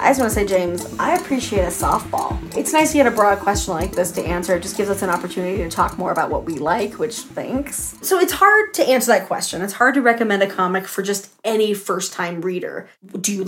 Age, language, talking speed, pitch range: 20-39, English, 255 wpm, 190-240 Hz